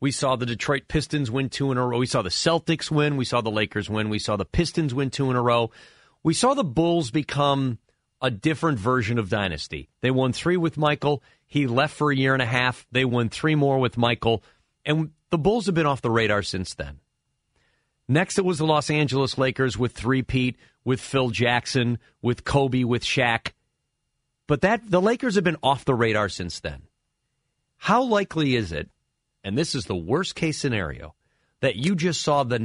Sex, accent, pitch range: male, American, 120-150 Hz